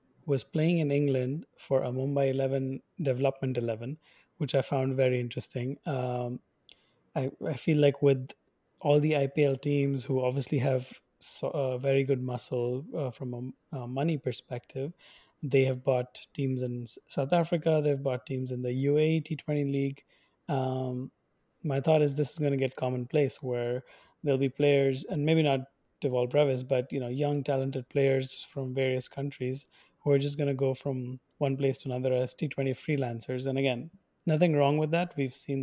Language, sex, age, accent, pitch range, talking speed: English, male, 20-39, Indian, 130-145 Hz, 175 wpm